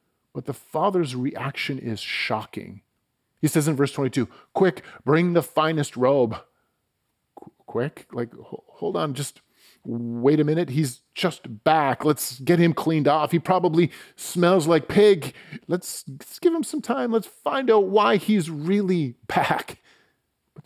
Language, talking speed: English, 150 wpm